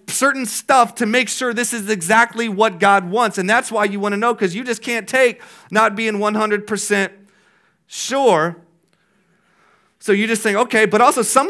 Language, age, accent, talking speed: English, 30-49, American, 185 wpm